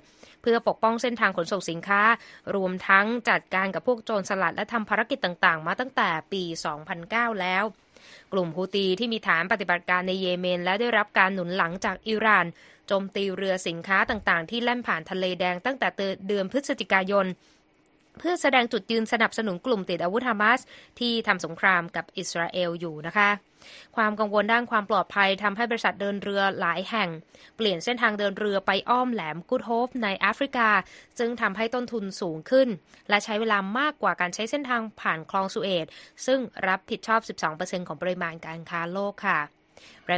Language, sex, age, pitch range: Thai, female, 20-39, 180-230 Hz